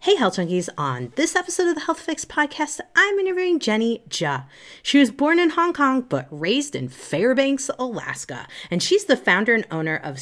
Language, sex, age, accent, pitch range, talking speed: English, female, 30-49, American, 170-270 Hz, 195 wpm